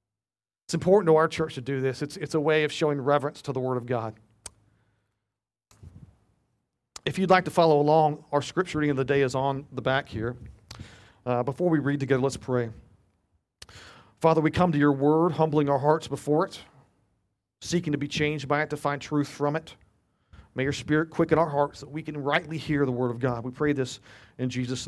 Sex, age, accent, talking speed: male, 40-59, American, 210 wpm